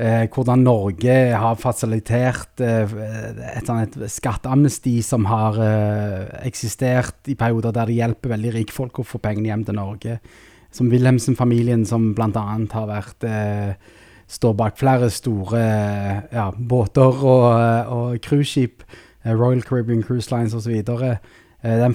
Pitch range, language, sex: 110-125 Hz, English, male